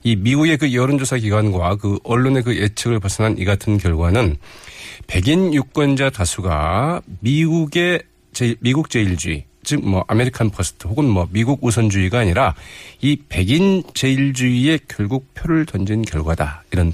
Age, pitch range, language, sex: 40-59, 100-140 Hz, Korean, male